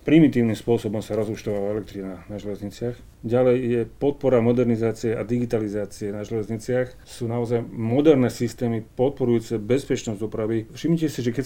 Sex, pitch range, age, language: male, 110-125 Hz, 40-59, Slovak